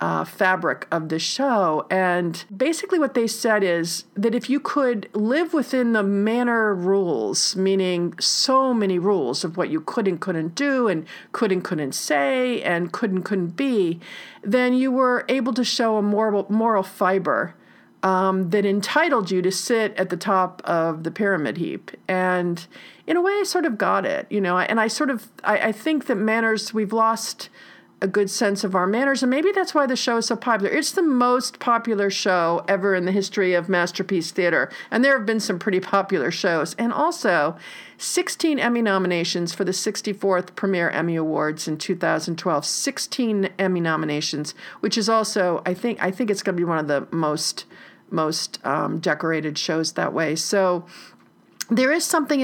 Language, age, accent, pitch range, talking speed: English, 50-69, American, 180-240 Hz, 185 wpm